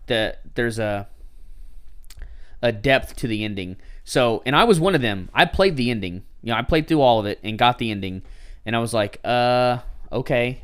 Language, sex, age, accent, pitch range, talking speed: English, male, 20-39, American, 95-130 Hz, 210 wpm